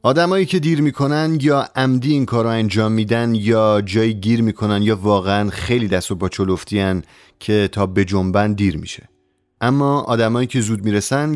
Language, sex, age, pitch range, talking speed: Persian, male, 30-49, 100-135 Hz, 180 wpm